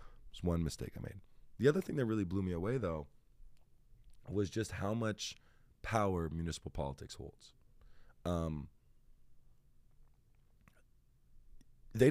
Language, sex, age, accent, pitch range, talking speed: English, male, 20-39, American, 85-120 Hz, 115 wpm